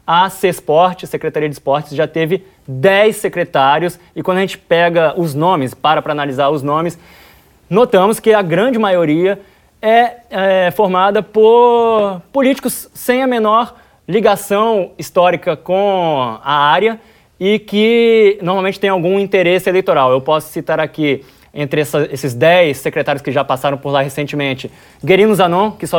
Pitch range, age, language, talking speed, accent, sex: 155-195 Hz, 20-39, Portuguese, 150 wpm, Brazilian, male